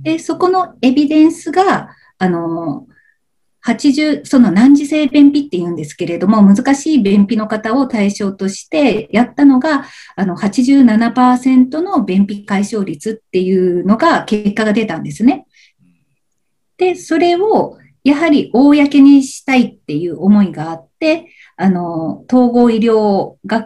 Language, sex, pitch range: Japanese, female, 195-280 Hz